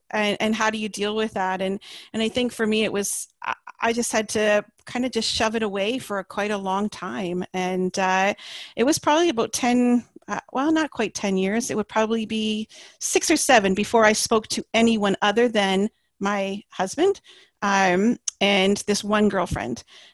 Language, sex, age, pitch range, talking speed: English, female, 40-59, 200-250 Hz, 195 wpm